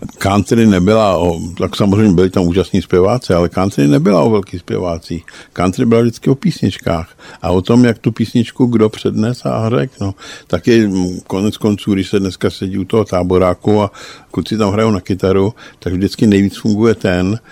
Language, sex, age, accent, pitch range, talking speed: Czech, male, 60-79, native, 95-115 Hz, 180 wpm